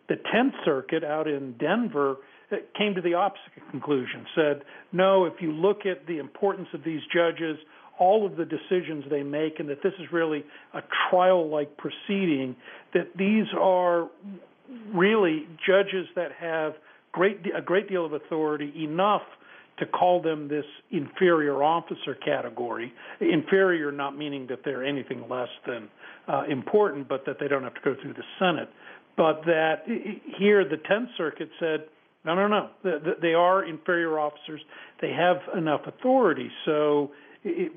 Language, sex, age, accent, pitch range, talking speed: English, male, 50-69, American, 150-190 Hz, 155 wpm